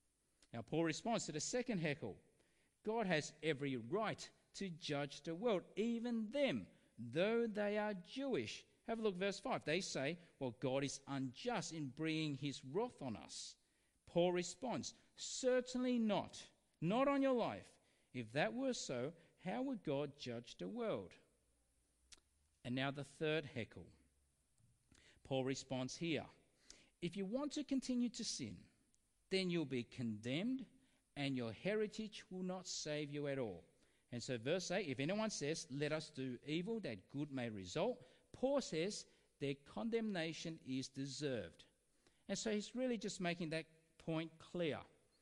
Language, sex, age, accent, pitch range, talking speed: English, male, 50-69, Australian, 135-215 Hz, 155 wpm